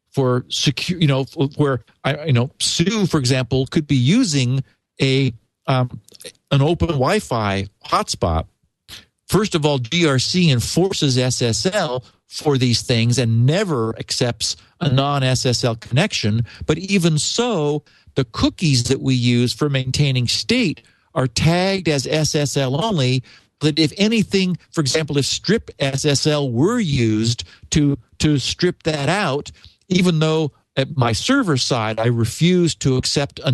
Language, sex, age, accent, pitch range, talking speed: English, male, 50-69, American, 125-160 Hz, 140 wpm